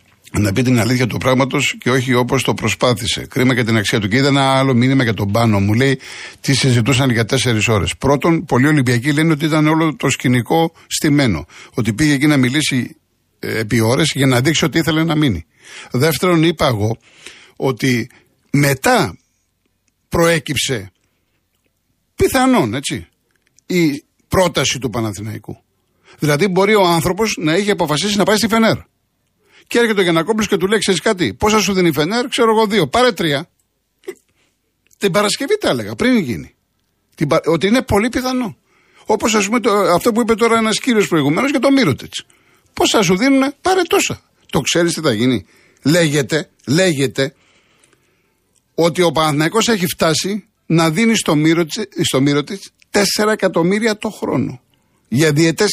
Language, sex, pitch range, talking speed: Greek, male, 130-205 Hz, 165 wpm